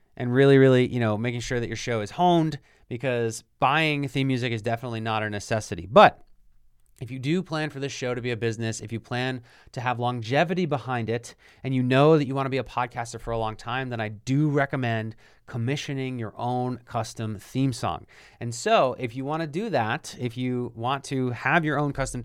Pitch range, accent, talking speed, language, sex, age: 120-155 Hz, American, 220 wpm, English, male, 30-49